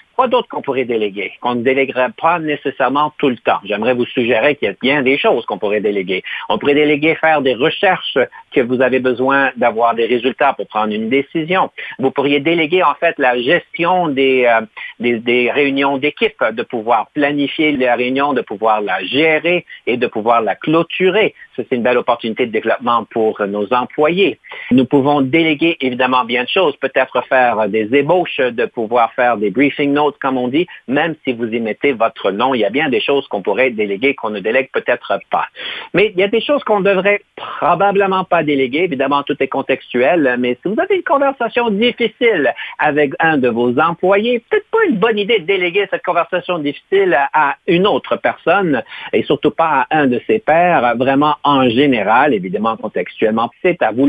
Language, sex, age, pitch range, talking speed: French, male, 50-69, 125-175 Hz, 195 wpm